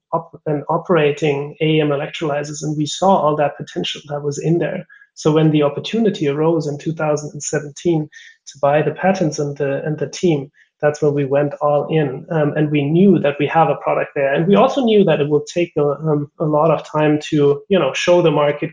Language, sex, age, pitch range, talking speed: English, male, 30-49, 150-175 Hz, 215 wpm